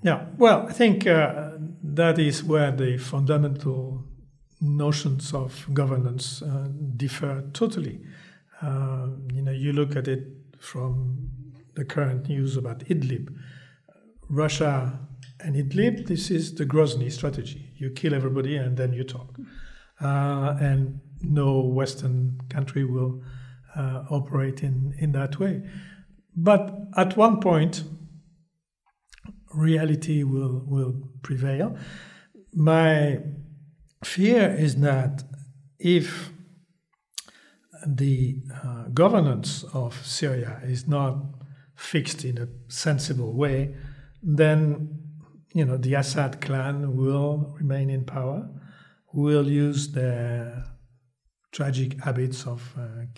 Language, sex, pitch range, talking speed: English, male, 130-155 Hz, 110 wpm